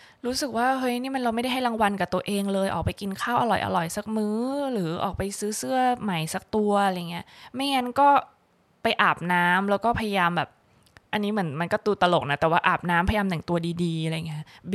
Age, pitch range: 20-39, 175-215 Hz